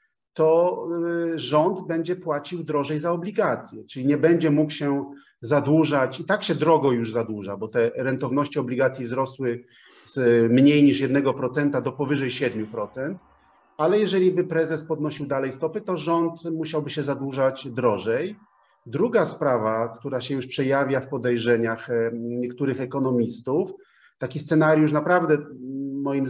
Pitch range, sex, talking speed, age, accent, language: 130-155 Hz, male, 130 wpm, 30-49, native, Polish